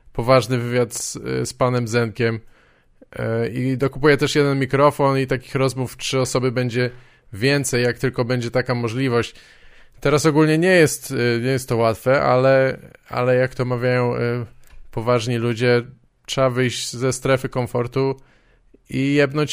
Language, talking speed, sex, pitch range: Polish, 135 wpm, male, 120-135 Hz